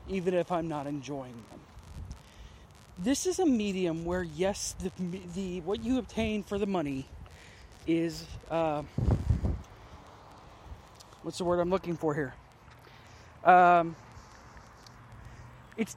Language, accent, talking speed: English, American, 115 wpm